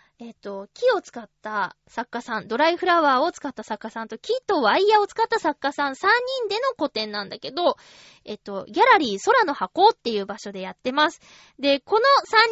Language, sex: Japanese, female